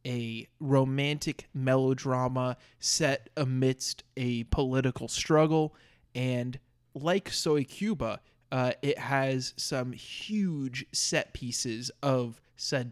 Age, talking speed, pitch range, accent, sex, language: 20-39, 100 wpm, 120-140 Hz, American, male, English